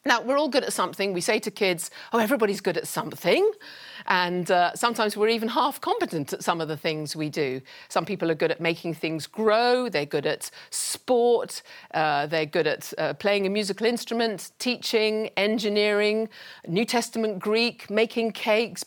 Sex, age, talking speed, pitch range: female, 40-59, 180 wpm, 165-240 Hz